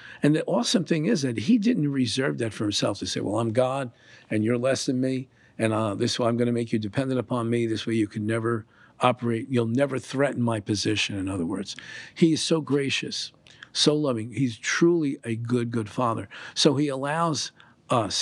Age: 50-69